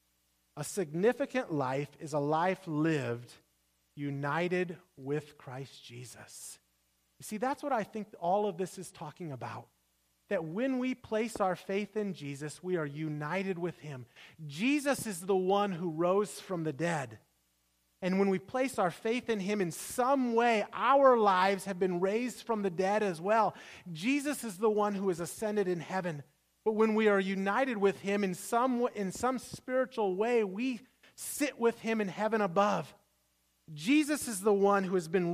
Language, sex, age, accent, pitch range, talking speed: English, male, 30-49, American, 165-220 Hz, 175 wpm